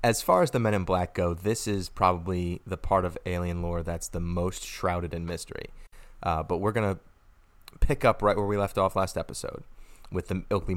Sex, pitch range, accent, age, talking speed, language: male, 85-110 Hz, American, 30-49, 215 wpm, English